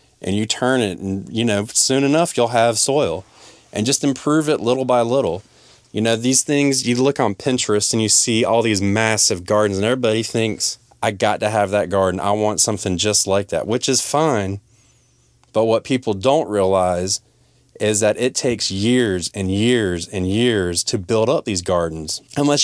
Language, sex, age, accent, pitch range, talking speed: English, male, 20-39, American, 105-130 Hz, 190 wpm